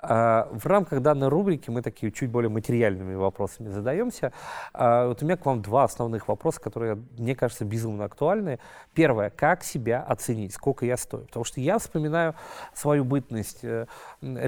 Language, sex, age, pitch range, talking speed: Russian, male, 30-49, 110-135 Hz, 155 wpm